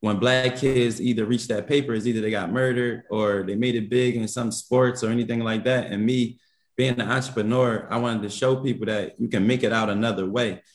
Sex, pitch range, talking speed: male, 110-125 Hz, 235 wpm